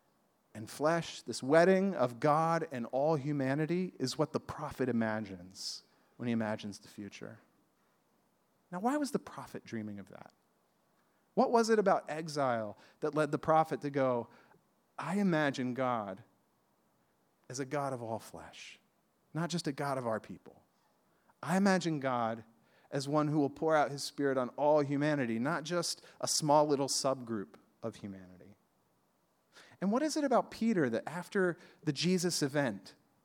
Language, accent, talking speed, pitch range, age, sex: English, American, 155 wpm, 130-180 Hz, 40-59, male